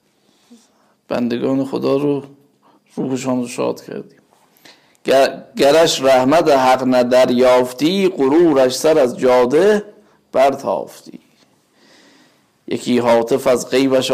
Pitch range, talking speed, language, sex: 125-155 Hz, 90 wpm, Persian, male